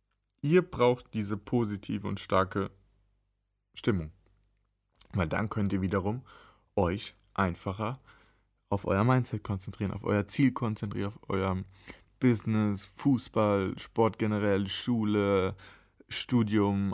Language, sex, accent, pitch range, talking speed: German, male, German, 95-110 Hz, 105 wpm